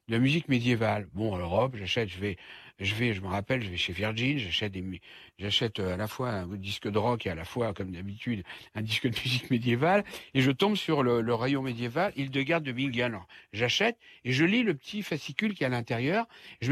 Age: 60-79